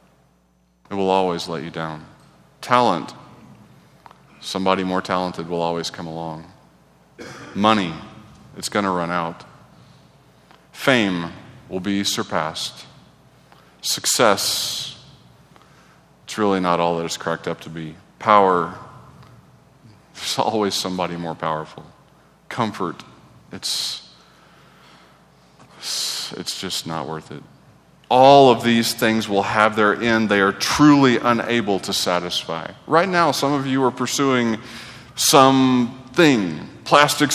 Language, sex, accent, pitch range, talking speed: English, male, American, 90-135 Hz, 115 wpm